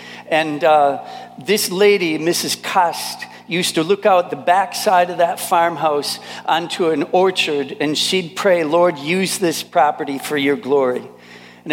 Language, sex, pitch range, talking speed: English, male, 150-175 Hz, 150 wpm